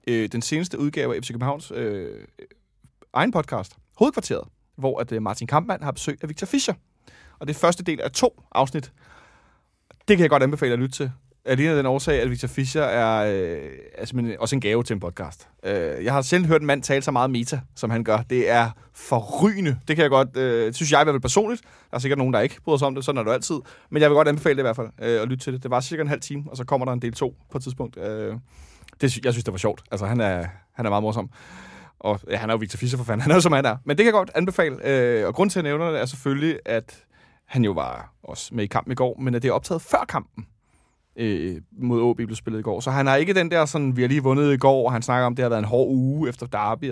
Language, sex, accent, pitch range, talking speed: Danish, male, native, 115-150 Hz, 275 wpm